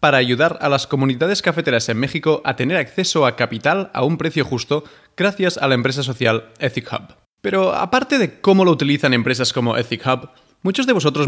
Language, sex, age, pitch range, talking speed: English, male, 30-49, 130-180 Hz, 195 wpm